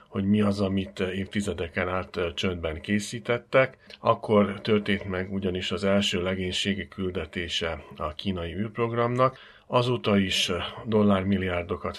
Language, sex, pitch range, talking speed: Hungarian, male, 95-105 Hz, 110 wpm